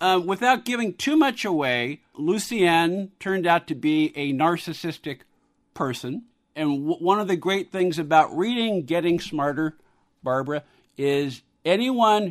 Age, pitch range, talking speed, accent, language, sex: 50-69, 140-175 Hz, 130 wpm, American, English, male